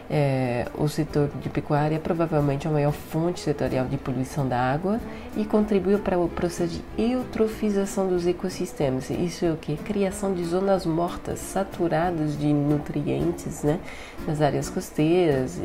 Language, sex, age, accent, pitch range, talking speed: Portuguese, female, 30-49, Brazilian, 155-200 Hz, 150 wpm